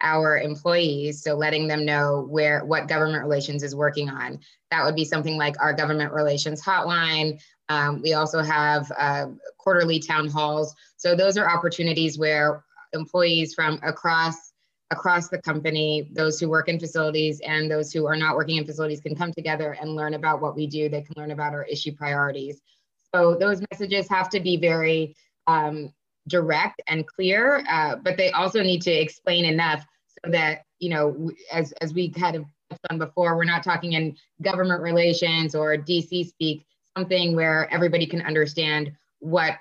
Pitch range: 150-170 Hz